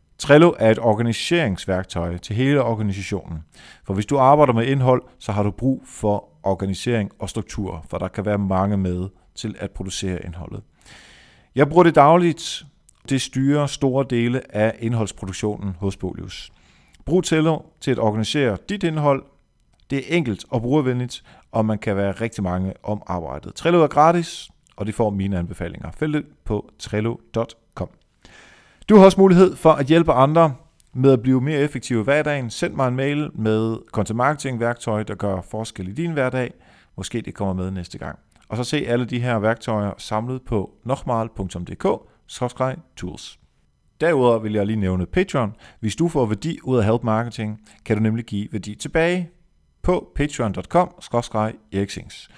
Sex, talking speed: male, 160 wpm